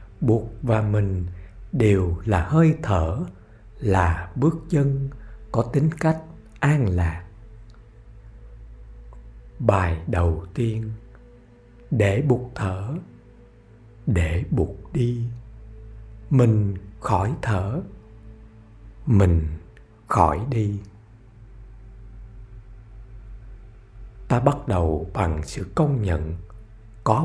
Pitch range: 100-120 Hz